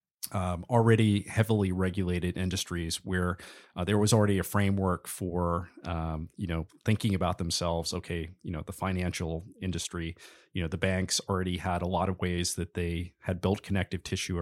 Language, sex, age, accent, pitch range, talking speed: English, male, 30-49, American, 85-100 Hz, 170 wpm